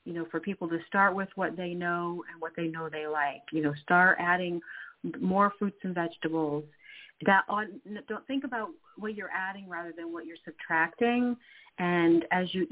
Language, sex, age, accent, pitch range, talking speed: English, female, 40-59, American, 160-185 Hz, 190 wpm